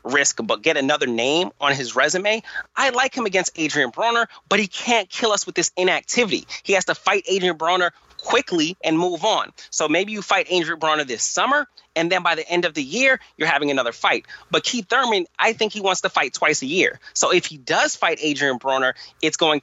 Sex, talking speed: male, 225 wpm